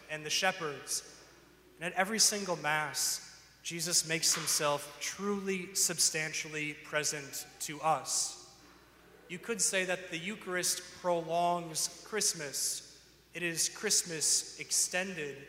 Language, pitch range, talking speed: English, 150-180 Hz, 110 wpm